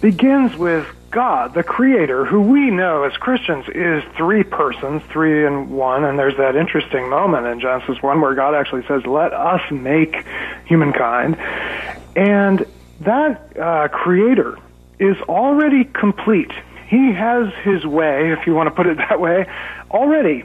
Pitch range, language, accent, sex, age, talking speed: 145-215 Hz, English, American, male, 40-59, 155 wpm